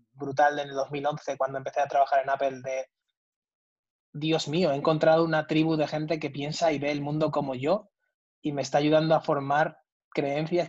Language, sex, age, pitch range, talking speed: English, male, 20-39, 140-165 Hz, 190 wpm